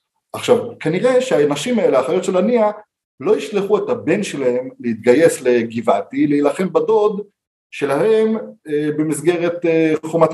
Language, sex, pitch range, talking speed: Hebrew, male, 125-195 Hz, 110 wpm